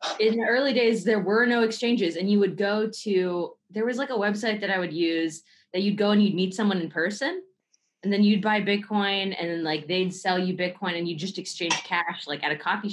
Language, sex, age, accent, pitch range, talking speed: English, female, 20-39, American, 170-215 Hz, 240 wpm